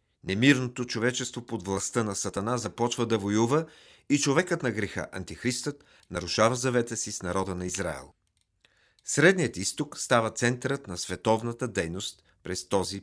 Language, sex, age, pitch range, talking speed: Bulgarian, male, 40-59, 100-125 Hz, 140 wpm